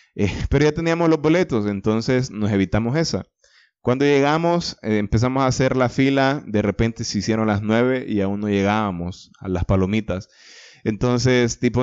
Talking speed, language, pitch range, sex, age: 165 wpm, Spanish, 110-135 Hz, male, 20-39